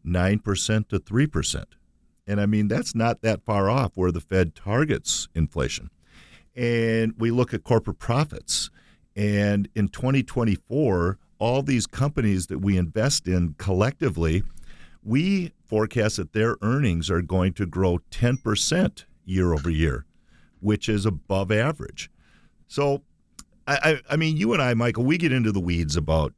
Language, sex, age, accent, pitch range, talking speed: English, male, 50-69, American, 85-120 Hz, 150 wpm